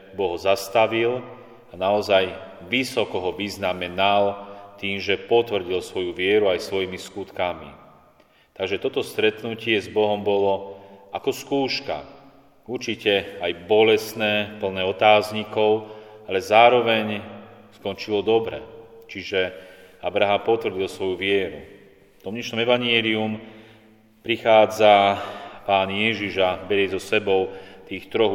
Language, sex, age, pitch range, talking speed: Slovak, male, 30-49, 95-110 Hz, 100 wpm